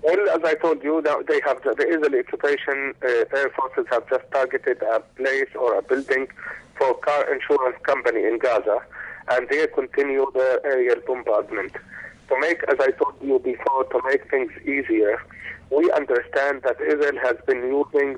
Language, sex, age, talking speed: English, male, 50-69, 170 wpm